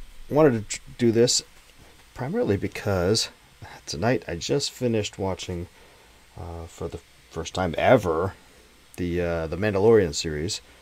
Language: English